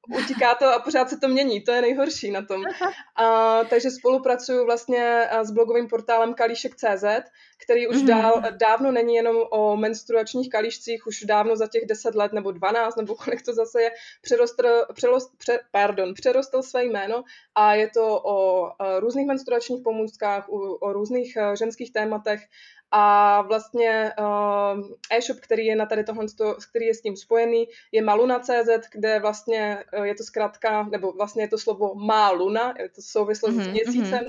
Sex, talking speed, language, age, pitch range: female, 160 wpm, Slovak, 20-39, 215-245 Hz